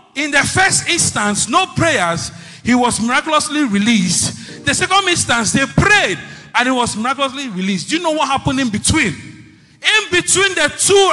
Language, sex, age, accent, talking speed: English, male, 40-59, Nigerian, 165 wpm